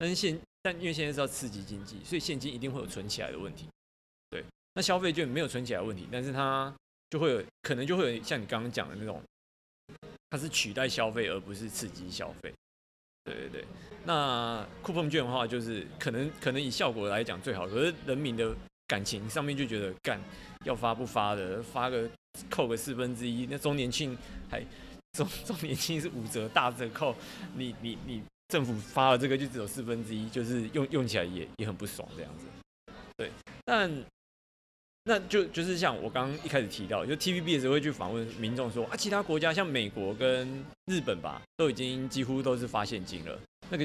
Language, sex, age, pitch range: Chinese, male, 20-39, 115-155 Hz